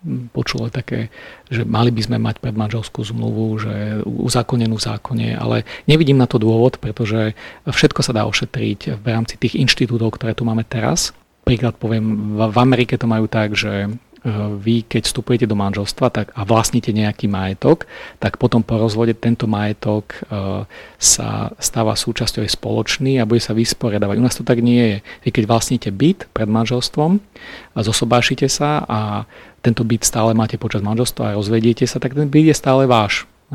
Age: 40-59